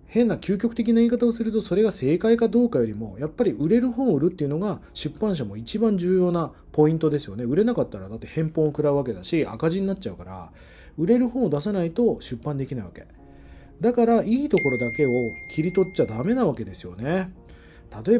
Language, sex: Japanese, male